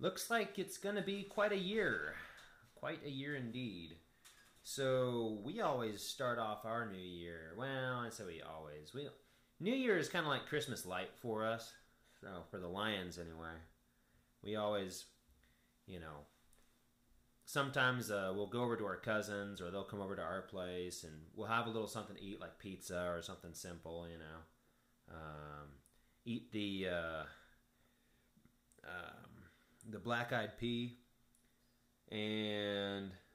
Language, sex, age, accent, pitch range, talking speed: English, male, 30-49, American, 90-120 Hz, 155 wpm